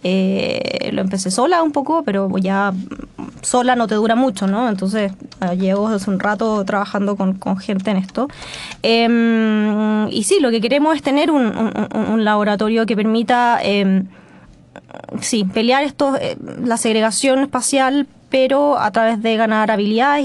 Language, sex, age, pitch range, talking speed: Spanish, female, 20-39, 200-245 Hz, 160 wpm